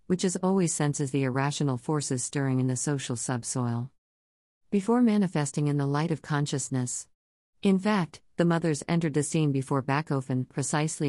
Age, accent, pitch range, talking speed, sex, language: 50-69, American, 130-175 Hz, 155 wpm, female, English